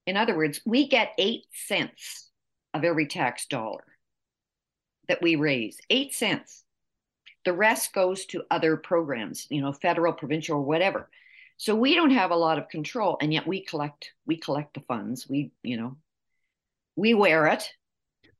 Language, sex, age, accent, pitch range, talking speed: English, female, 50-69, American, 150-220 Hz, 160 wpm